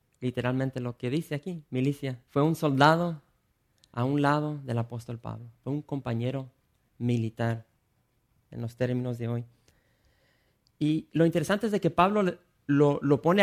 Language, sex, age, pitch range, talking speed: English, male, 30-49, 120-145 Hz, 150 wpm